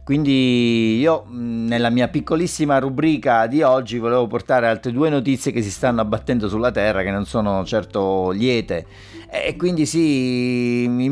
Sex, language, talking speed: male, Italian, 150 wpm